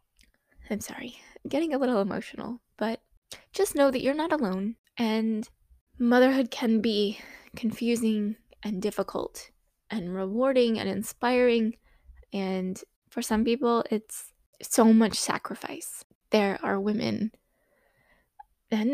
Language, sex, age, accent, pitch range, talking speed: English, female, 20-39, American, 200-240 Hz, 115 wpm